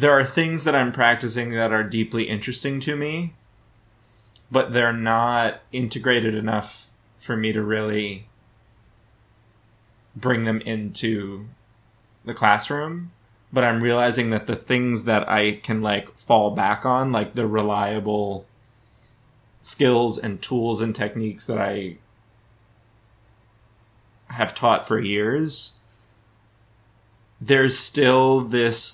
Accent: American